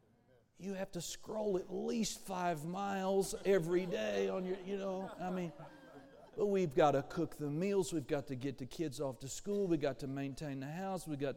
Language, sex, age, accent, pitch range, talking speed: English, male, 50-69, American, 125-185 Hz, 210 wpm